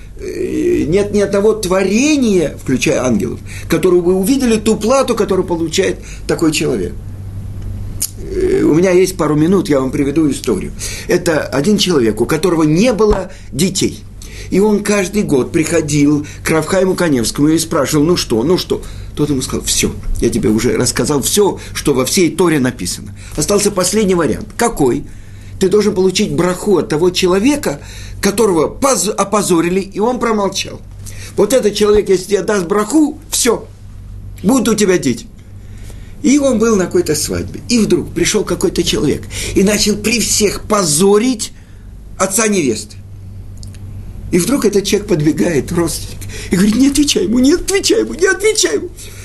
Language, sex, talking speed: Russian, male, 150 wpm